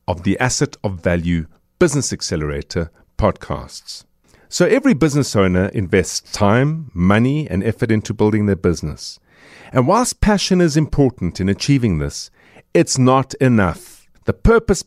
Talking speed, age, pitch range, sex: 135 wpm, 50-69, 95-150 Hz, male